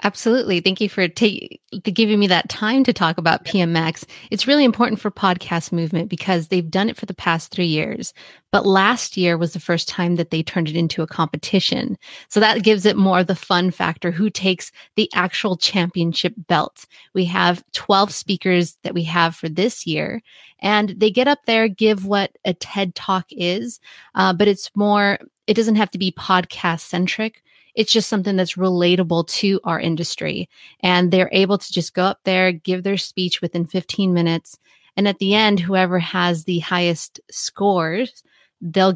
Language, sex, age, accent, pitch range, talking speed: English, female, 30-49, American, 175-215 Hz, 185 wpm